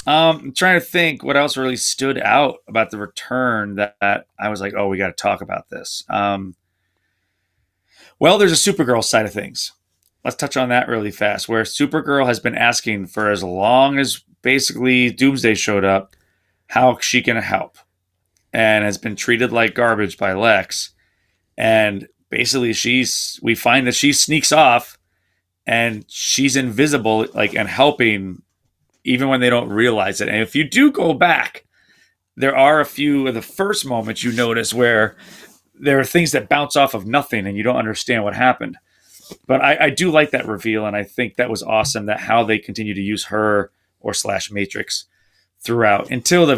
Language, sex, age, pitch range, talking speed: English, male, 30-49, 105-130 Hz, 185 wpm